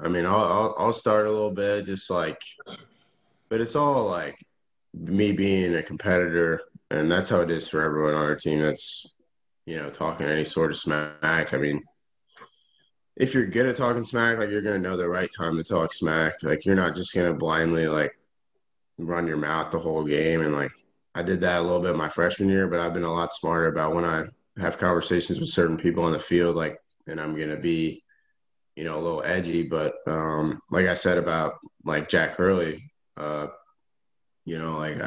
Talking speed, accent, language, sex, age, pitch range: 210 wpm, American, English, male, 20-39, 80-95 Hz